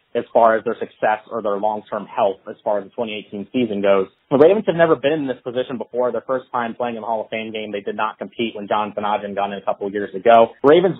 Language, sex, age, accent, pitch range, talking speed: English, male, 30-49, American, 110-130 Hz, 275 wpm